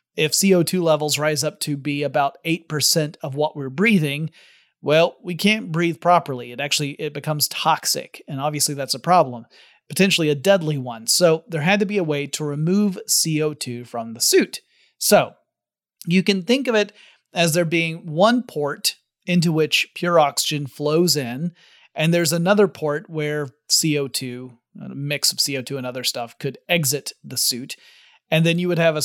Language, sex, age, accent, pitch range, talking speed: English, male, 30-49, American, 145-180 Hz, 175 wpm